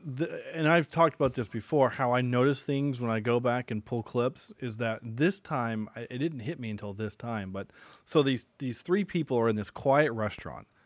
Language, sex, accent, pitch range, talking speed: English, male, American, 110-135 Hz, 215 wpm